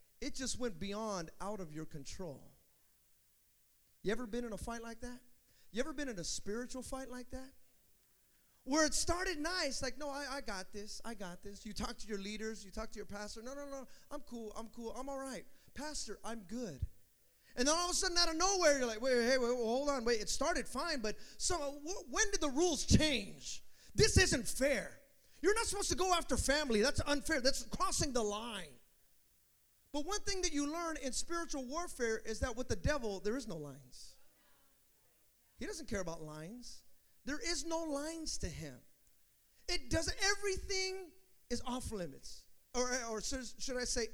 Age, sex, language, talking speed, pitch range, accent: 30-49, male, English, 195 wpm, 215-295 Hz, American